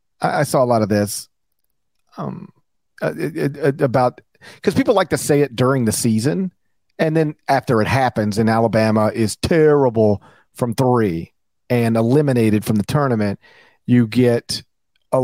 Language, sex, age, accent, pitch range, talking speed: English, male, 40-59, American, 115-170 Hz, 155 wpm